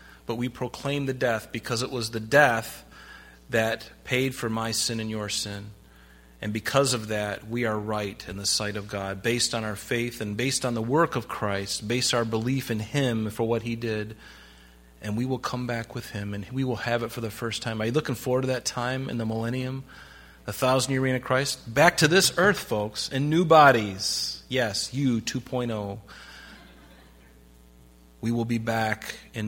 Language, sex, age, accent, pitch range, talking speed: English, male, 30-49, American, 100-120 Hz, 195 wpm